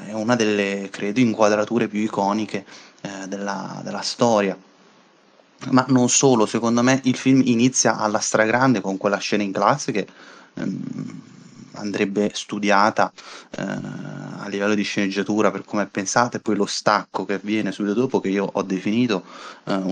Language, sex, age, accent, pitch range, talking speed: Italian, male, 20-39, native, 100-120 Hz, 155 wpm